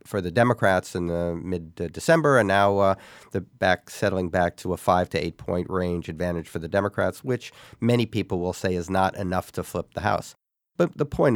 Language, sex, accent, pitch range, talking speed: English, male, American, 85-115 Hz, 200 wpm